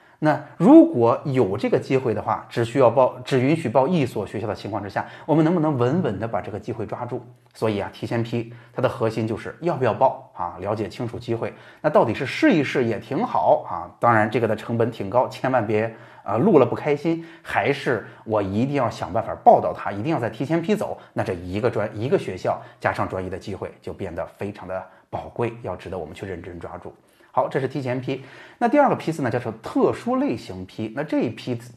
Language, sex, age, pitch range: Chinese, male, 30-49, 110-140 Hz